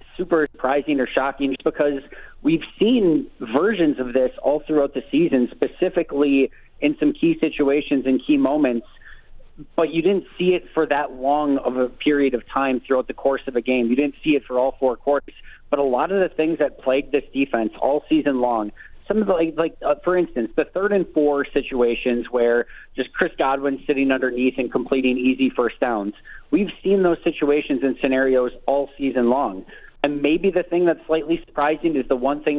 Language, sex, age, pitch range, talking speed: English, male, 40-59, 130-155 Hz, 195 wpm